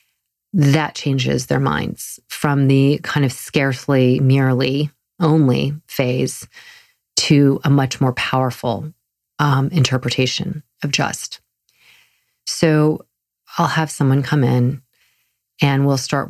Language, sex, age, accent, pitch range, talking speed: English, female, 40-59, American, 120-145 Hz, 110 wpm